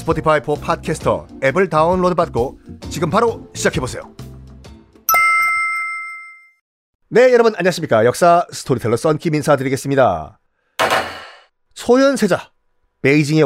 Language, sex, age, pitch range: Korean, male, 40-59, 135-210 Hz